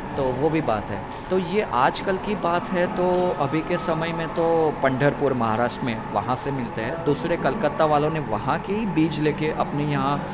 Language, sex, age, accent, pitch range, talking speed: Hindi, male, 20-39, native, 125-160 Hz, 210 wpm